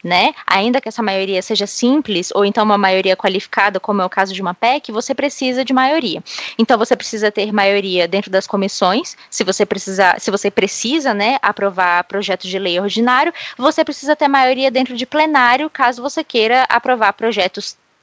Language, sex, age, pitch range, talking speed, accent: Portuguese, female, 20-39, 200-285 Hz, 175 wpm, Brazilian